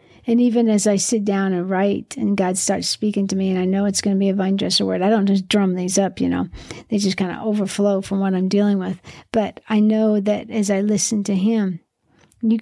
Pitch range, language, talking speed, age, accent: 190-220 Hz, English, 250 wpm, 50-69, American